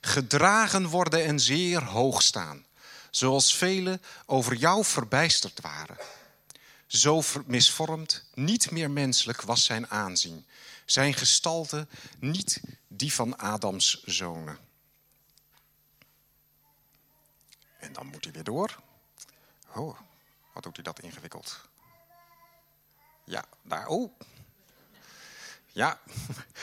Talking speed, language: 95 wpm, Dutch